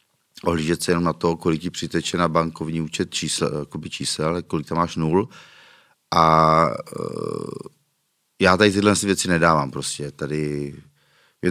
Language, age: Czech, 30-49